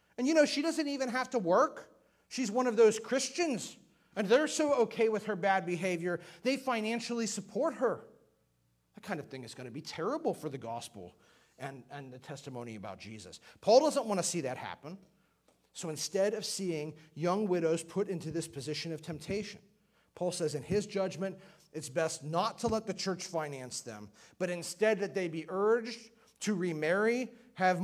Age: 40-59